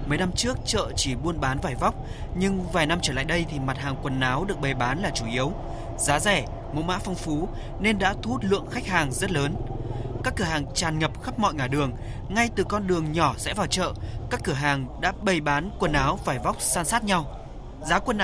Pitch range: 140-200 Hz